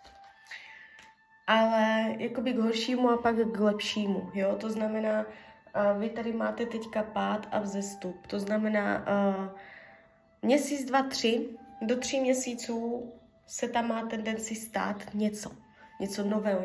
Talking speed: 125 wpm